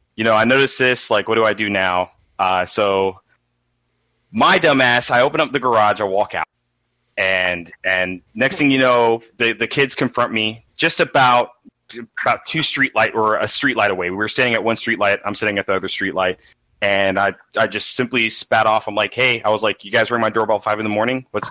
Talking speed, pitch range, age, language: 225 wpm, 100-125 Hz, 30-49, English